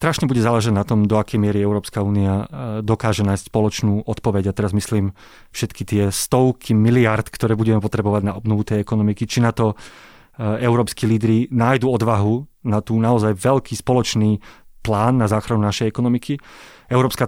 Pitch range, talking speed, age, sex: 110-135 Hz, 160 wpm, 30-49, male